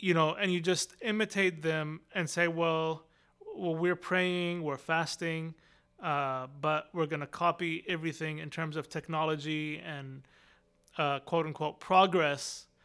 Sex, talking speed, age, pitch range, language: male, 140 wpm, 30-49, 155-180 Hz, English